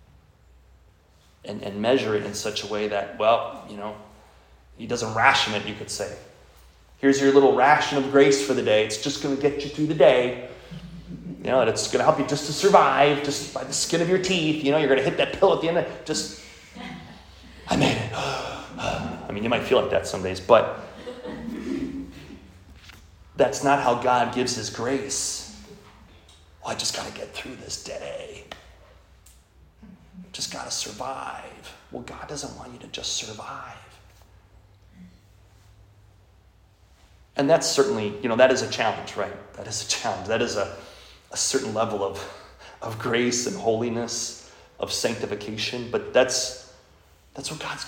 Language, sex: English, male